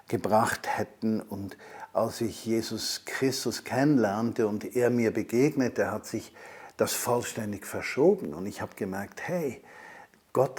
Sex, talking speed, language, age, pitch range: male, 130 wpm, German, 50-69, 105-135 Hz